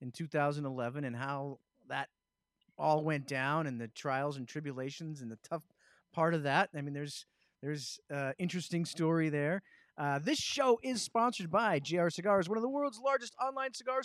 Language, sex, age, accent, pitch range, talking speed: English, male, 30-49, American, 145-200 Hz, 185 wpm